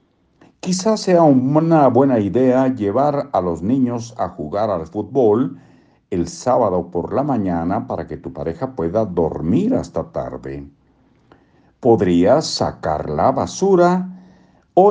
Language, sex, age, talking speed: Spanish, male, 60-79, 125 wpm